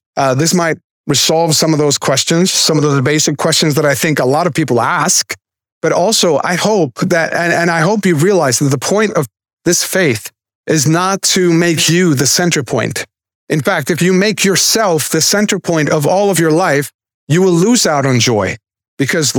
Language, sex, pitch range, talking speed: English, male, 140-185 Hz, 205 wpm